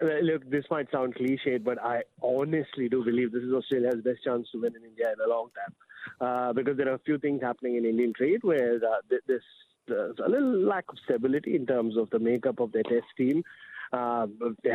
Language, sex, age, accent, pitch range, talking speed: English, male, 30-49, Indian, 120-145 Hz, 230 wpm